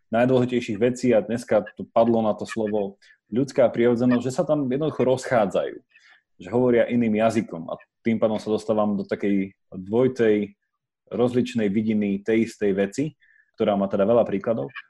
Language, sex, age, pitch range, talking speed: Slovak, male, 30-49, 110-145 Hz, 155 wpm